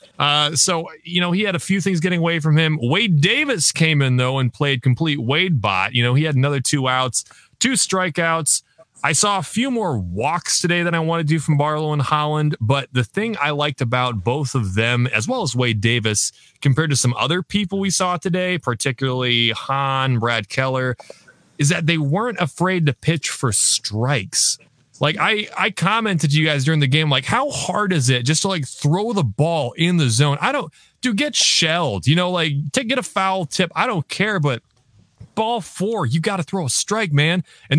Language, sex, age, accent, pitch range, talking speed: English, male, 30-49, American, 130-180 Hz, 210 wpm